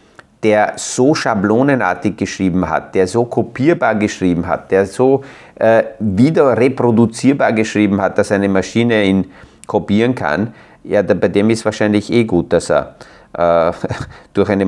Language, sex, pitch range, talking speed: German, male, 95-120 Hz, 145 wpm